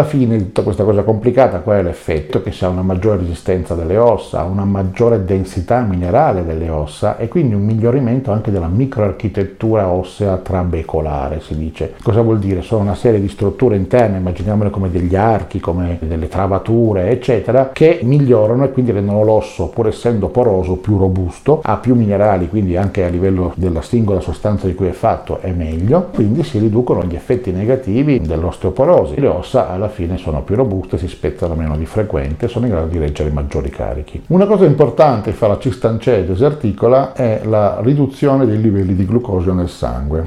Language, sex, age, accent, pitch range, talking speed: Italian, male, 50-69, native, 90-115 Hz, 185 wpm